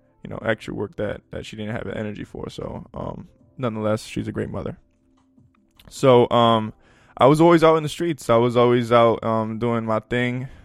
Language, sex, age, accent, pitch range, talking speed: English, male, 20-39, American, 105-125 Hz, 205 wpm